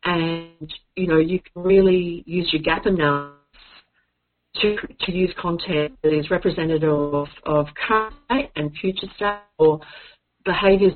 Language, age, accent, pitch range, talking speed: English, 40-59, Australian, 155-195 Hz, 135 wpm